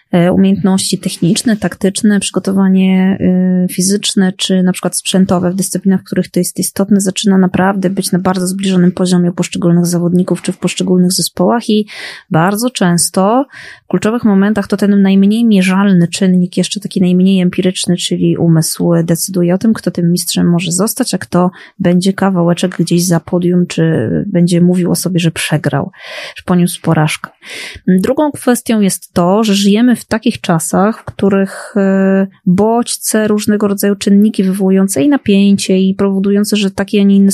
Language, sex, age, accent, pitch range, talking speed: Polish, female, 20-39, native, 180-205 Hz, 155 wpm